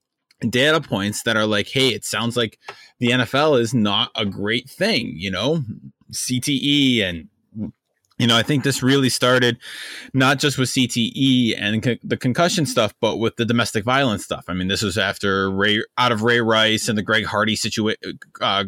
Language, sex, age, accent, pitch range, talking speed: English, male, 20-39, American, 110-135 Hz, 185 wpm